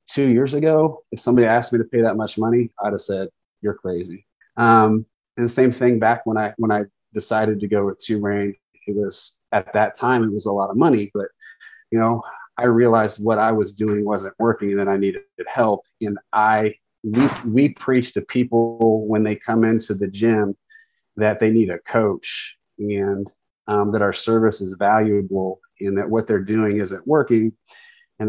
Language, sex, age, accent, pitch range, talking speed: English, male, 30-49, American, 100-115 Hz, 195 wpm